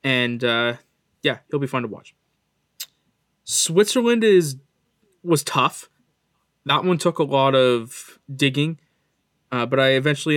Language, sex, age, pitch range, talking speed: English, male, 20-39, 125-160 Hz, 135 wpm